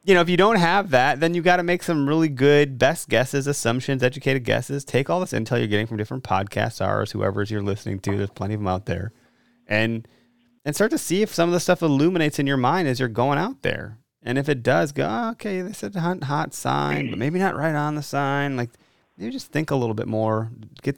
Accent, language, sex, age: American, English, male, 30-49